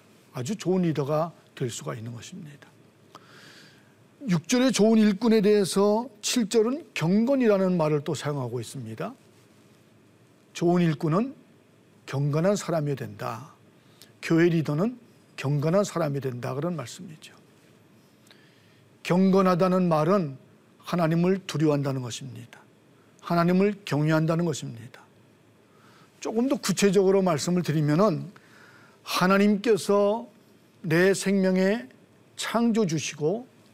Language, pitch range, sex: Korean, 150-205 Hz, male